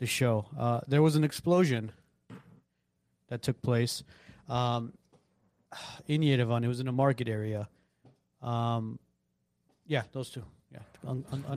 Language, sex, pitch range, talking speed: English, male, 110-135 Hz, 130 wpm